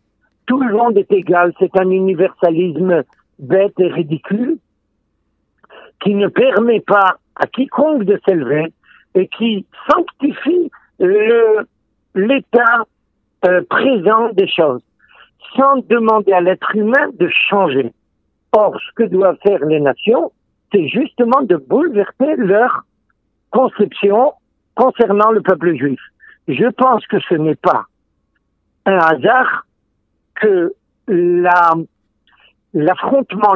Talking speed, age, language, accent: 110 wpm, 60-79, French, French